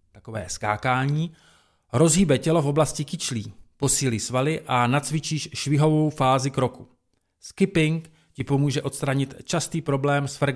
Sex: male